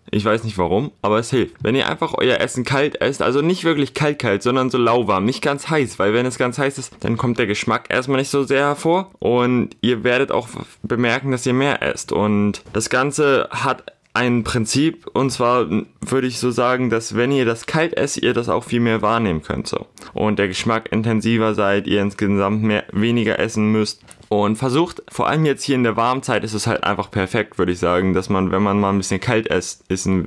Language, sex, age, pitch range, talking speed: German, male, 20-39, 105-130 Hz, 220 wpm